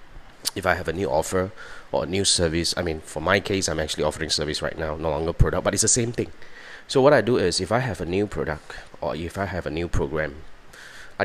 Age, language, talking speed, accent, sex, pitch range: 30-49, English, 255 wpm, Malaysian, male, 80-100 Hz